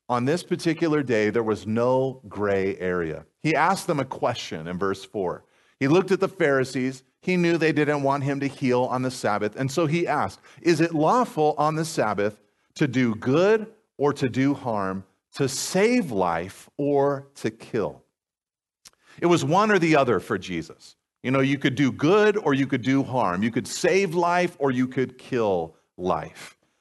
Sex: male